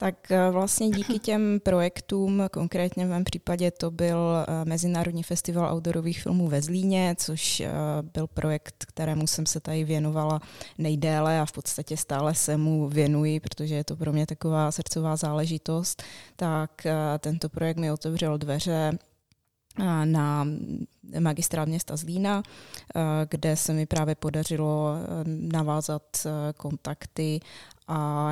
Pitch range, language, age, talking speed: 145-160 Hz, Czech, 20-39, 125 wpm